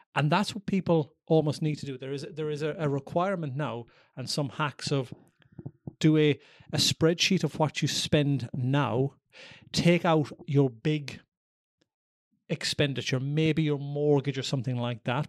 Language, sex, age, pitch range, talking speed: English, male, 30-49, 135-155 Hz, 160 wpm